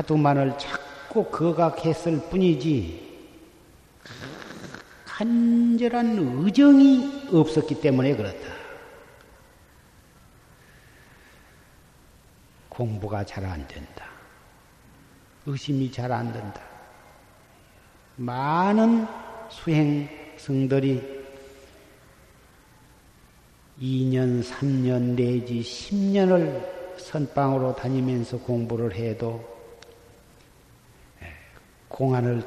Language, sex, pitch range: Korean, male, 120-170 Hz